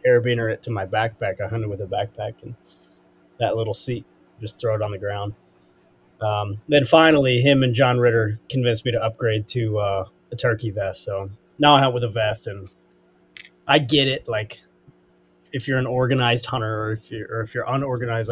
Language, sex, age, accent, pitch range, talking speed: English, male, 20-39, American, 100-125 Hz, 190 wpm